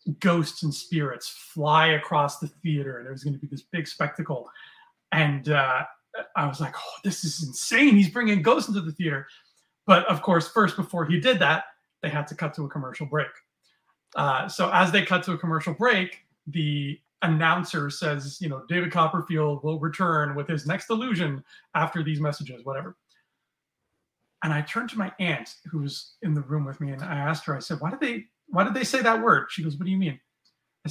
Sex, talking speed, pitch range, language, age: male, 210 wpm, 150-190 Hz, English, 30-49